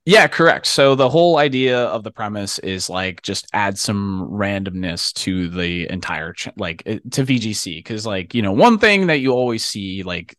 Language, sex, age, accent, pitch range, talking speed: English, male, 20-39, American, 95-140 Hz, 185 wpm